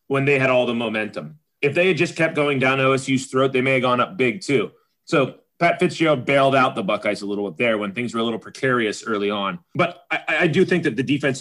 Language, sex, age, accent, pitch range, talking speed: English, male, 30-49, American, 125-160 Hz, 260 wpm